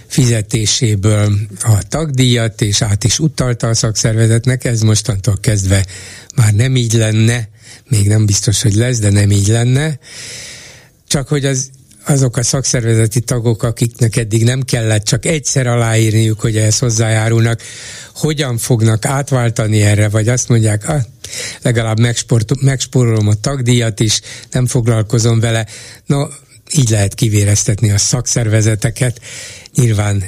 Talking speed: 125 wpm